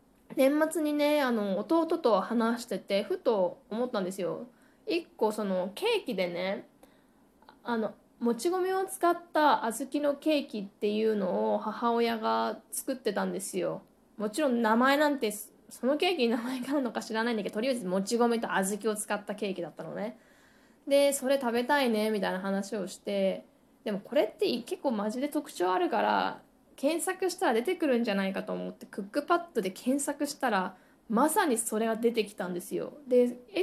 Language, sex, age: Japanese, female, 20-39